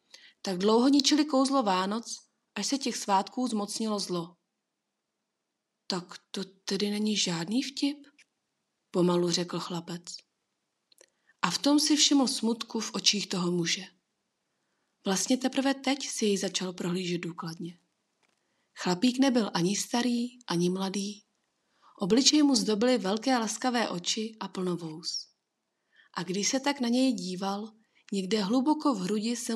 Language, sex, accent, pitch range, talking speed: Czech, female, native, 185-245 Hz, 130 wpm